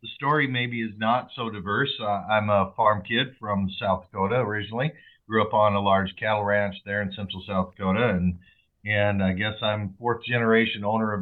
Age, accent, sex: 50-69, American, male